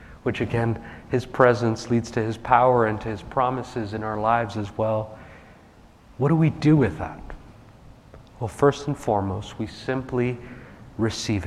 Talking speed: 155 wpm